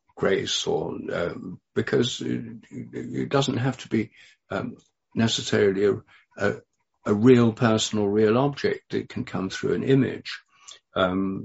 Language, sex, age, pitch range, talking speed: English, male, 60-79, 95-135 Hz, 140 wpm